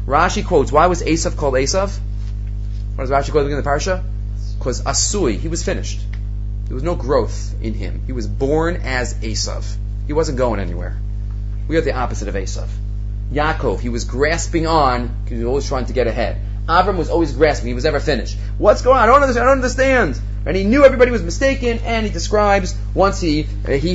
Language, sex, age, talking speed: English, male, 30-49, 205 wpm